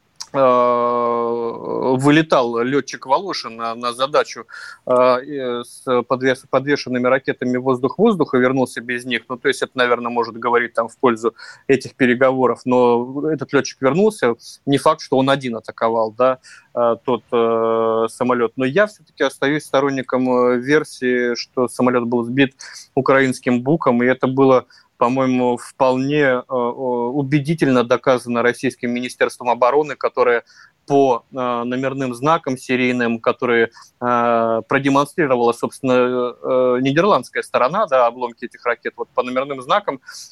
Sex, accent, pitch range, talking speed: male, native, 120-140 Hz, 120 wpm